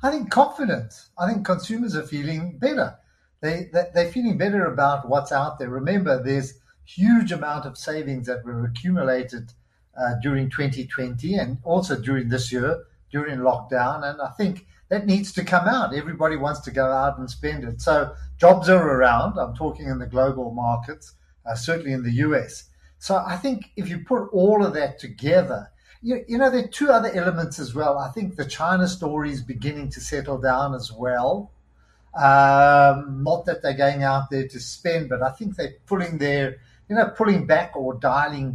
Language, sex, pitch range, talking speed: English, male, 130-180 Hz, 190 wpm